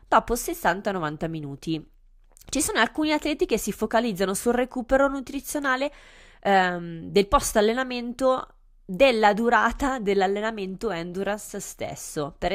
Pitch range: 170-245 Hz